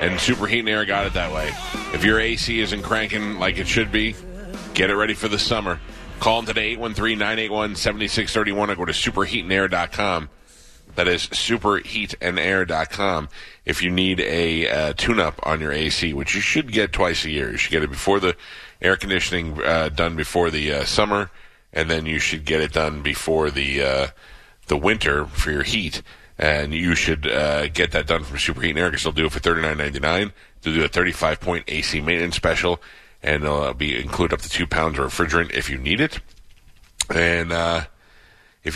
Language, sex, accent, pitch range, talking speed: English, male, American, 80-100 Hz, 190 wpm